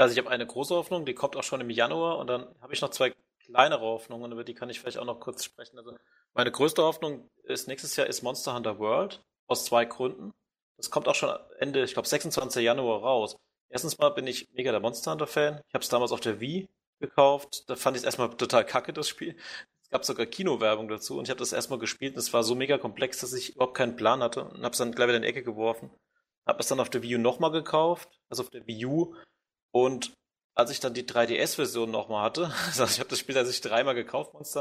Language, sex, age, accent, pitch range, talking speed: German, male, 30-49, German, 120-140 Hz, 250 wpm